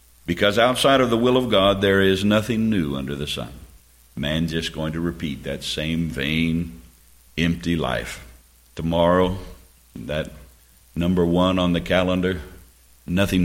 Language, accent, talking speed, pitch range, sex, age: English, American, 145 wpm, 65-95 Hz, male, 60-79